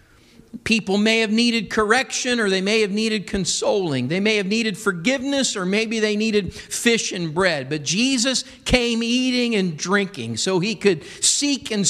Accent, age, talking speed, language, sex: American, 50-69, 170 wpm, English, male